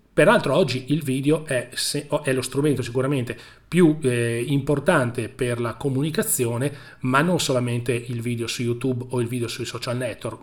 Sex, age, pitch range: male, 30-49, 120-145 Hz